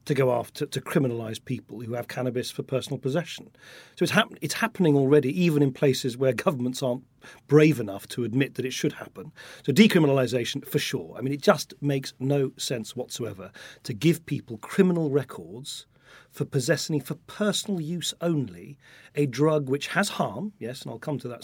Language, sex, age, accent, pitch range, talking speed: English, male, 40-59, British, 125-160 Hz, 180 wpm